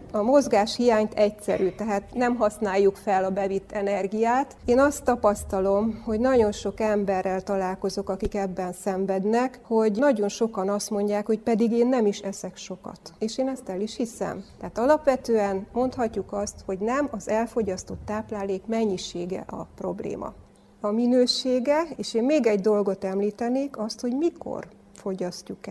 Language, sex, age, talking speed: Hungarian, female, 30-49, 150 wpm